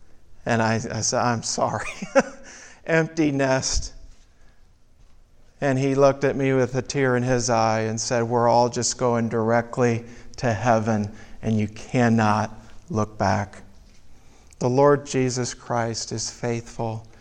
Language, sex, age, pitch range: English, male, 50-69, 110-125 Hz